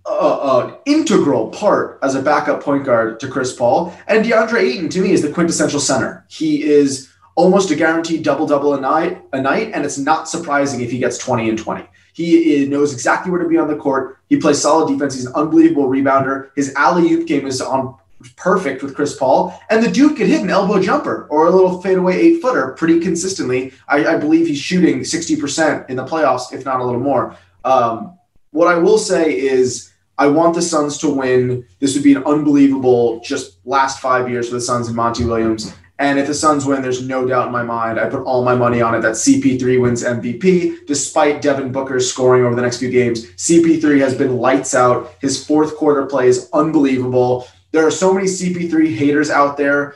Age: 20-39